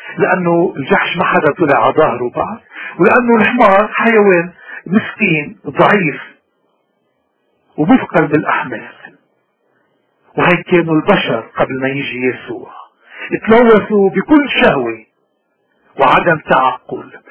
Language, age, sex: Arabic, 50-69, male